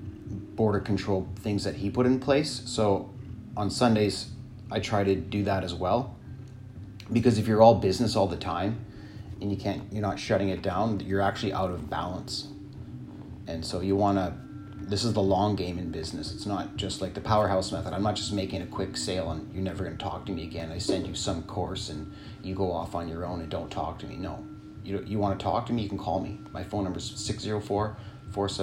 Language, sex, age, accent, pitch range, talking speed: English, male, 30-49, American, 95-115 Hz, 225 wpm